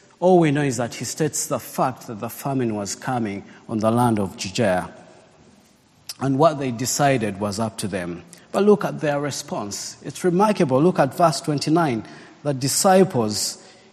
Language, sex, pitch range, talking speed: English, male, 115-175 Hz, 170 wpm